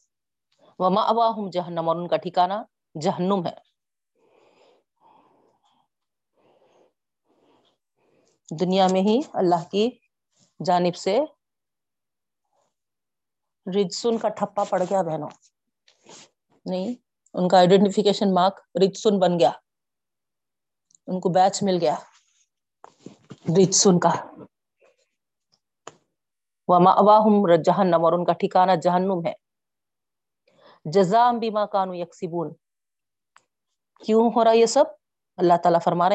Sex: female